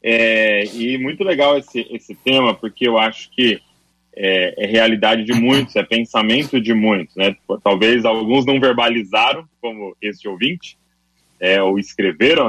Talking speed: 140 wpm